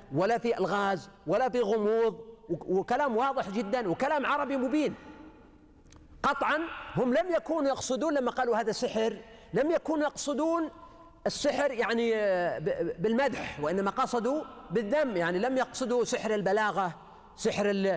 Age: 40-59